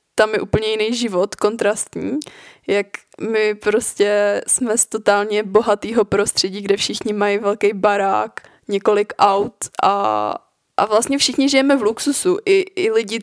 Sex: female